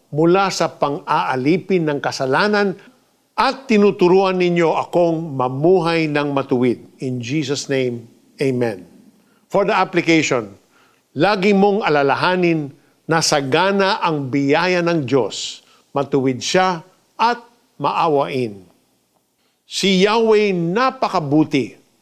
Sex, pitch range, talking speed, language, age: male, 140-185 Hz, 95 wpm, Filipino, 50-69